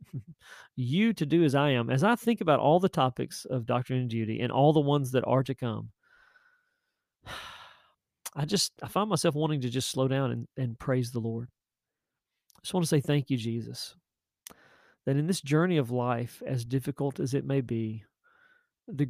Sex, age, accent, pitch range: male, 40-59, American, 125-155 Hz